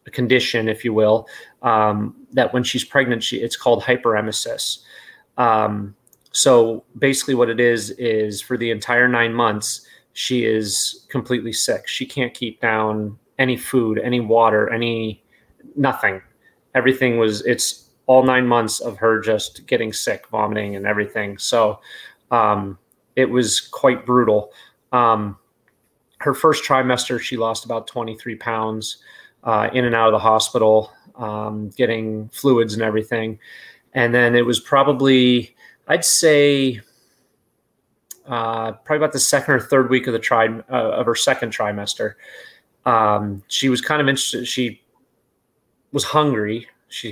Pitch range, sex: 110-130 Hz, male